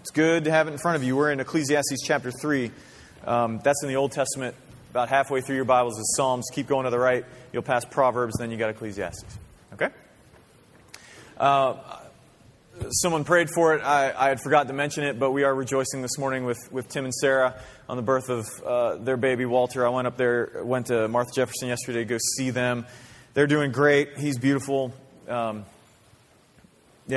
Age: 30-49